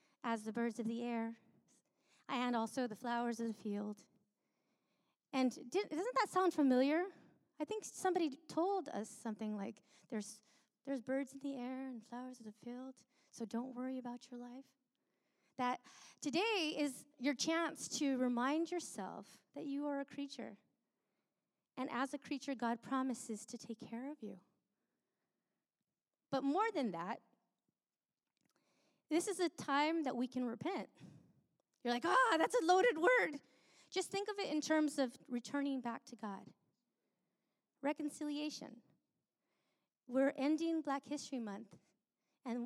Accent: American